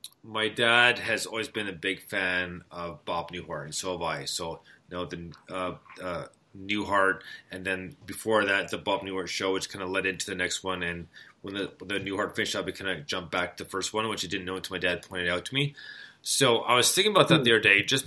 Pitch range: 95-145 Hz